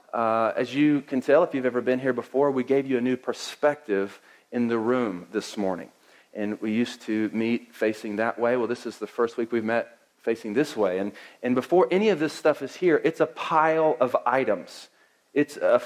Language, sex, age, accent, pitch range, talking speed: English, male, 40-59, American, 115-150 Hz, 210 wpm